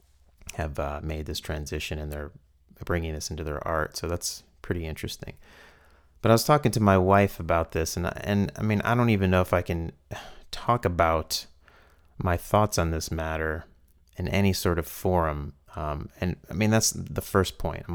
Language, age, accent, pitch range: English, 30-49, American, 75-95 Hz